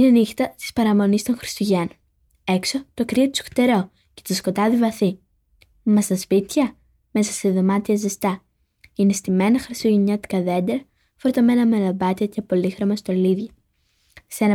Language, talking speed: English, 135 wpm